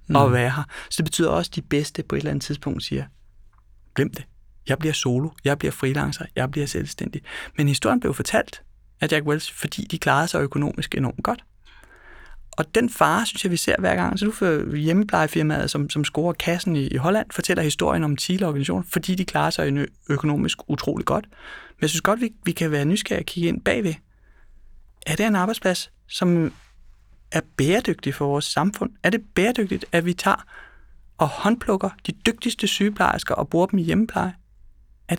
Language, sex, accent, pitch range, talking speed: Danish, male, native, 150-195 Hz, 190 wpm